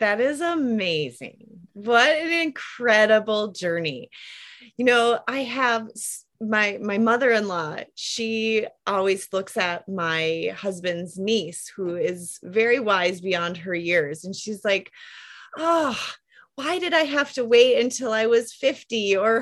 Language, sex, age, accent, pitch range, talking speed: English, female, 30-49, American, 195-255 Hz, 135 wpm